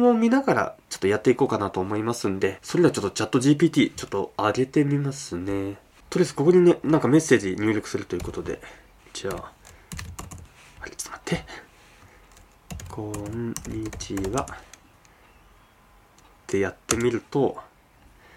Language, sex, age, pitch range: Japanese, male, 20-39, 100-150 Hz